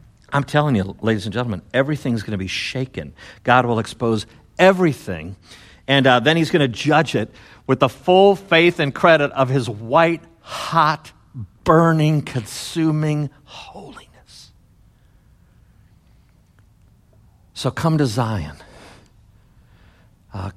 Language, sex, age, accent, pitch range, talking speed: English, male, 50-69, American, 95-125 Hz, 120 wpm